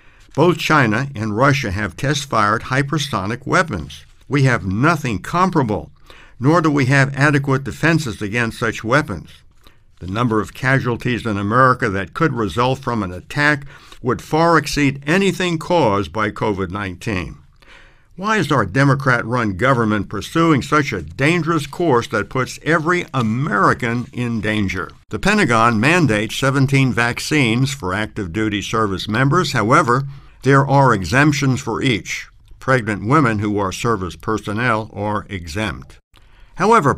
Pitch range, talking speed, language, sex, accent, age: 105-140 Hz, 130 wpm, English, male, American, 60-79